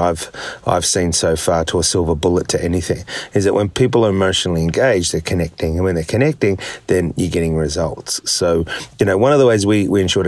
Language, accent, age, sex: English, Australian, 30-49, male